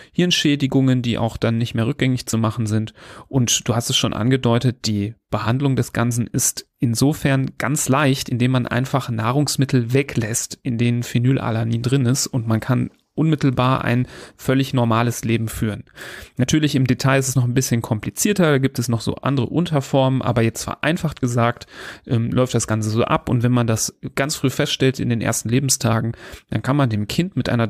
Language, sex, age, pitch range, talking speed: German, male, 30-49, 120-135 Hz, 190 wpm